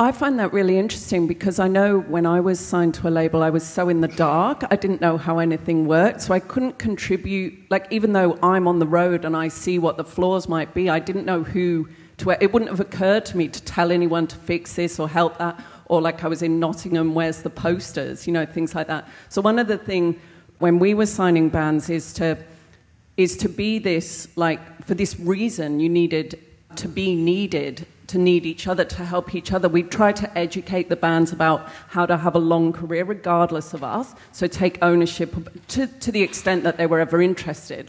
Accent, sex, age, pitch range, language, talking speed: British, female, 40-59, 165-185 Hz, English, 225 wpm